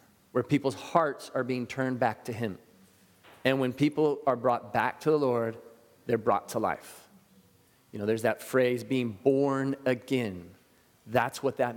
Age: 30-49